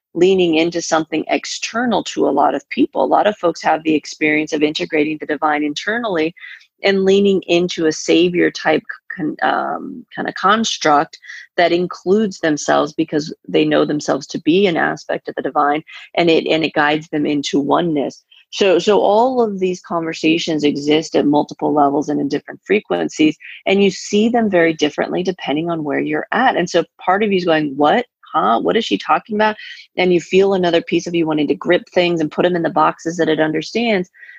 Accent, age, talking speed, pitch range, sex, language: American, 30-49, 195 wpm, 155-195 Hz, female, English